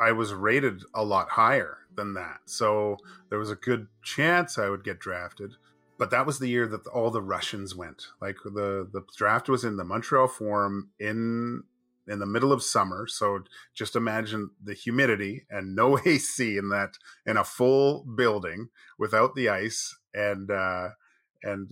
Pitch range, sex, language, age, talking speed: 100-115 Hz, male, English, 30-49, 175 wpm